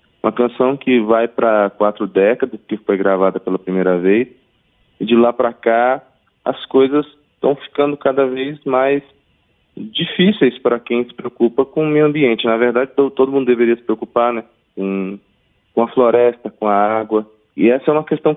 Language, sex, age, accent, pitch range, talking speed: Portuguese, male, 20-39, Brazilian, 100-130 Hz, 175 wpm